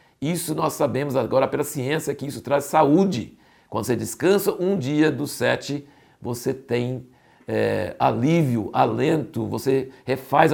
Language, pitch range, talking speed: Portuguese, 125-145 Hz, 135 wpm